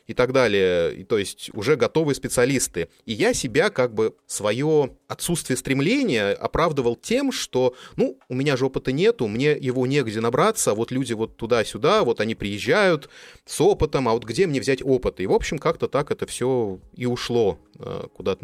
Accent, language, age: native, Russian, 20-39